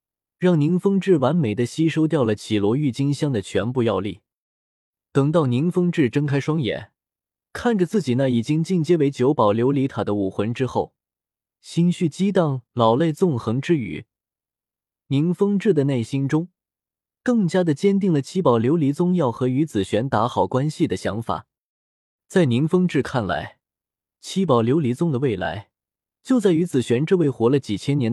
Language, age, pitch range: Chinese, 20-39, 120-165 Hz